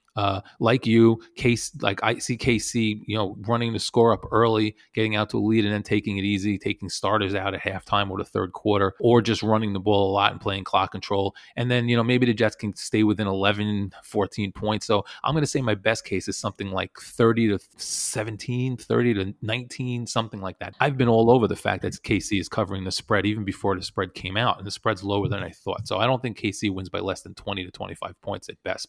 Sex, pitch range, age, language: male, 100-120 Hz, 30-49, English